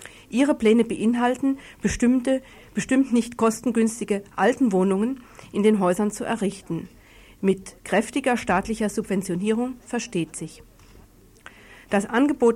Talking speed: 105 wpm